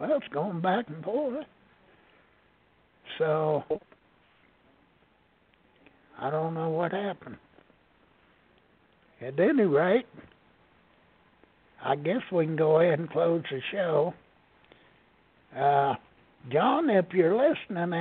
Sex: male